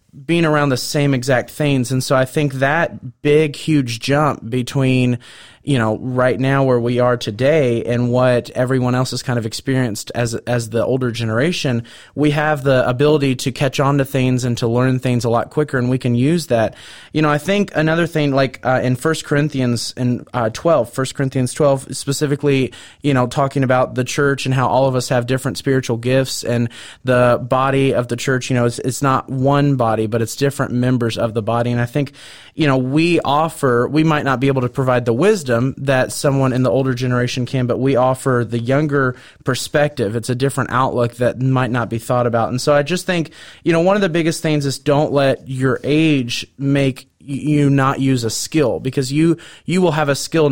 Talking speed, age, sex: 215 wpm, 30-49, male